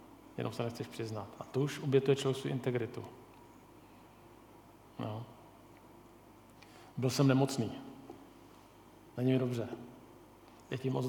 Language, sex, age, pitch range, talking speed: Czech, male, 40-59, 125-155 Hz, 110 wpm